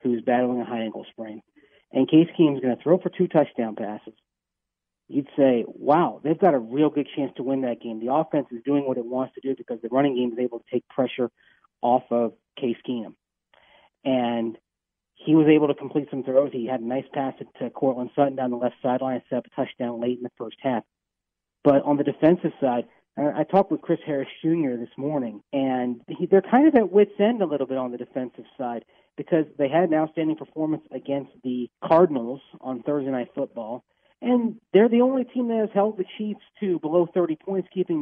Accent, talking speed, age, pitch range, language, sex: American, 220 wpm, 40-59, 125-175 Hz, English, male